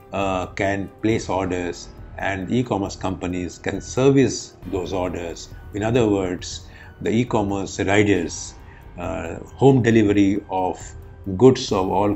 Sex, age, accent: male, 50-69, Indian